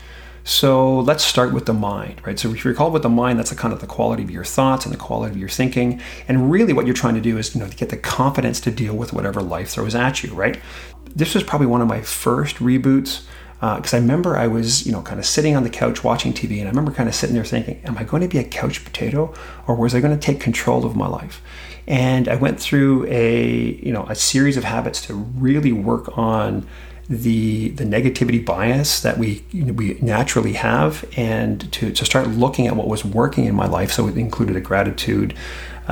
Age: 40-59